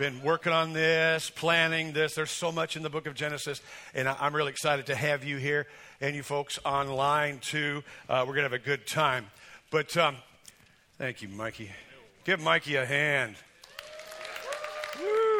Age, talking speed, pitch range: 50-69, 175 wpm, 145-170 Hz